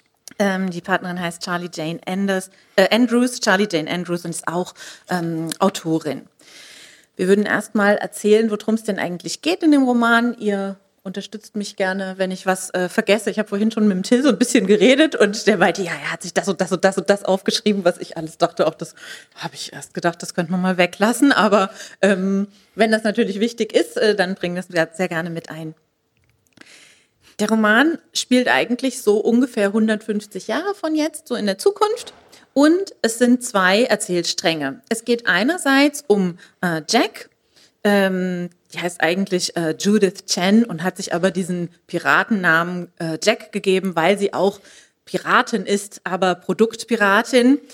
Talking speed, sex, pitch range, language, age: 180 wpm, female, 180-225 Hz, German, 30-49